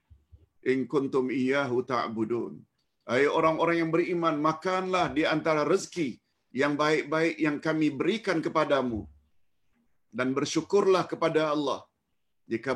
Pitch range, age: 115-165 Hz, 50-69